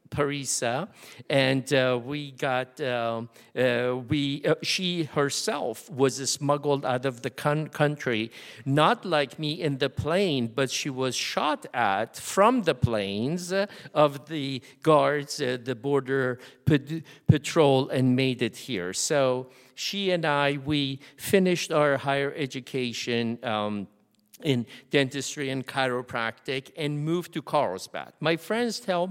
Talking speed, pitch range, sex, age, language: 140 wpm, 135-165 Hz, male, 50-69, English